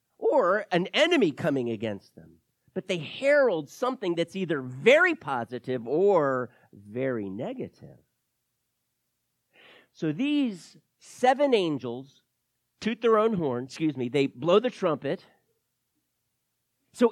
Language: English